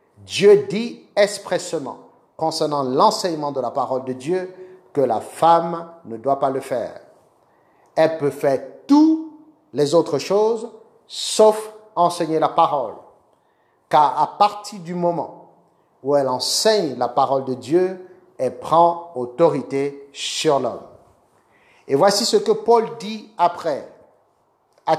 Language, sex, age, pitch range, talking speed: French, male, 50-69, 150-195 Hz, 130 wpm